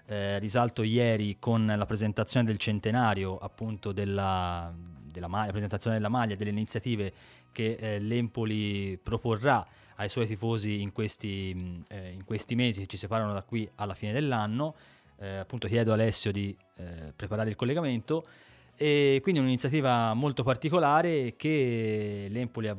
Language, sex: Italian, male